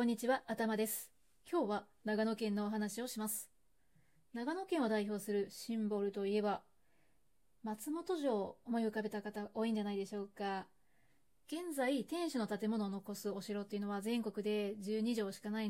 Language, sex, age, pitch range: Japanese, female, 20-39, 205-255 Hz